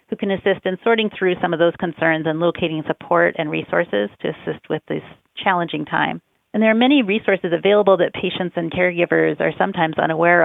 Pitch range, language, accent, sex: 170-210 Hz, English, American, female